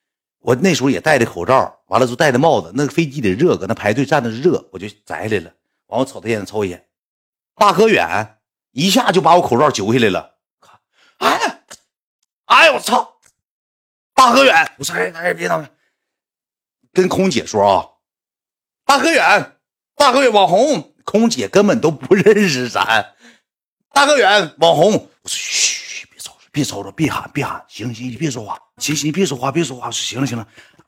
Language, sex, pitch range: Chinese, male, 125-205 Hz